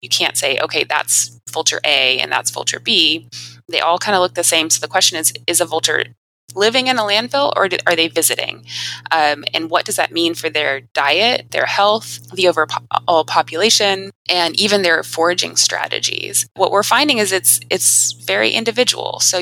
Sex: female